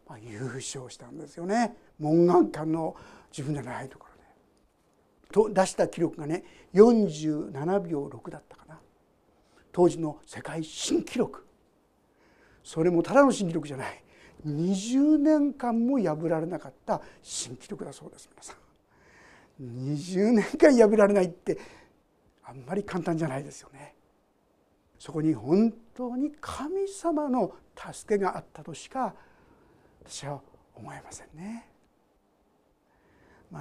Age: 60-79